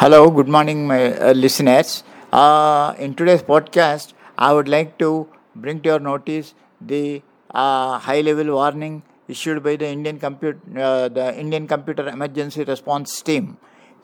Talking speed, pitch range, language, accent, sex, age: 150 wpm, 145-160 Hz, English, Indian, male, 50-69